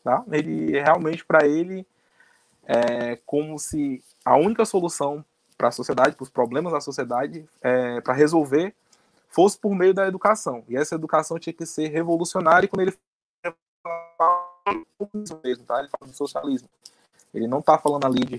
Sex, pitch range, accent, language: male, 140-190 Hz, Brazilian, Portuguese